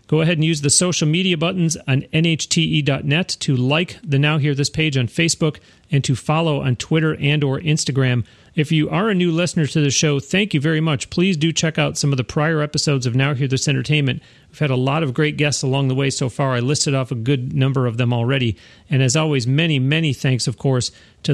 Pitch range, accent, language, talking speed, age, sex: 130-155 Hz, American, English, 235 wpm, 40-59, male